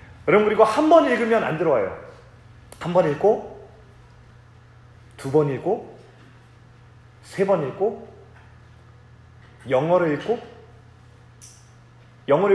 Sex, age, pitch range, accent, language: male, 30-49, 120-200 Hz, native, Korean